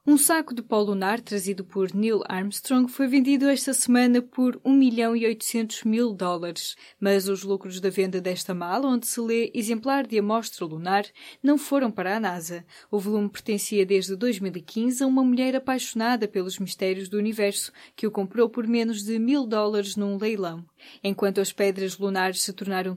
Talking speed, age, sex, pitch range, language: 180 wpm, 10-29, female, 195-250 Hz, Portuguese